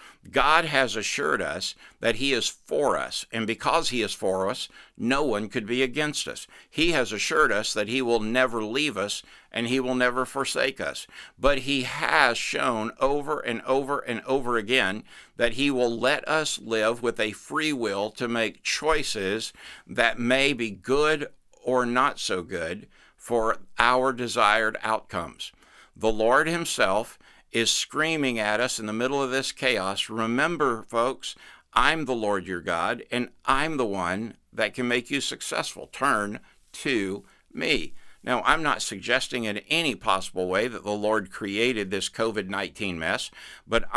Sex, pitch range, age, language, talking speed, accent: male, 110-130 Hz, 60-79, English, 165 wpm, American